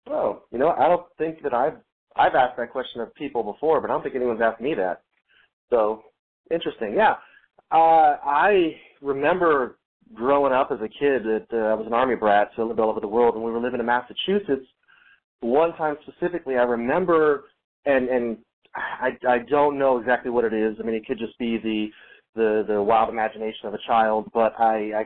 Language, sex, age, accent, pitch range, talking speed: English, male, 30-49, American, 110-135 Hz, 200 wpm